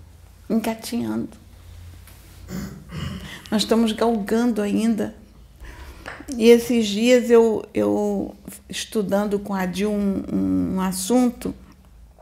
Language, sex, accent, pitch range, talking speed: Portuguese, female, Brazilian, 180-230 Hz, 85 wpm